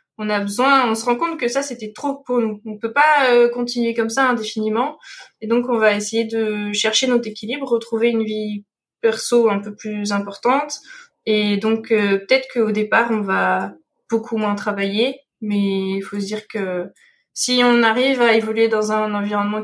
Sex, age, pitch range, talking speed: female, 20-39, 215-250 Hz, 195 wpm